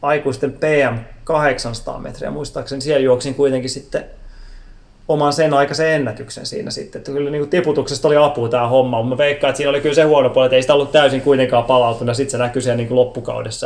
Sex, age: male, 20-39